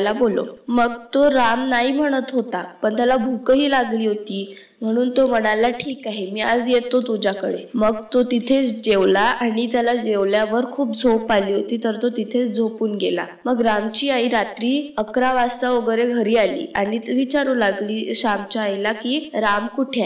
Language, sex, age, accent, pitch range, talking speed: Marathi, female, 20-39, native, 215-245 Hz, 115 wpm